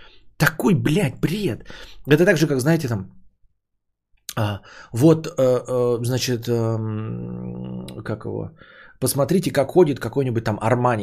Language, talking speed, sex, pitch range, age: Bulgarian, 105 wpm, male, 110-140 Hz, 20-39